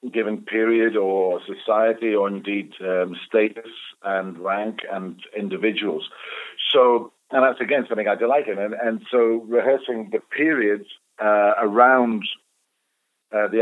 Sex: male